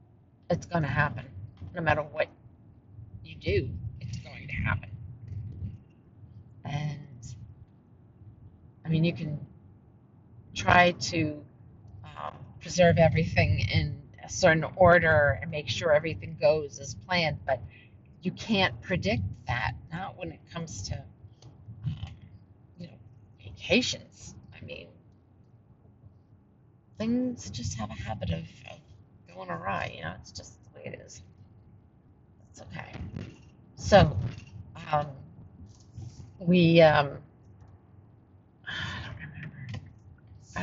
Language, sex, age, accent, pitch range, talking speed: English, female, 40-59, American, 105-150 Hz, 110 wpm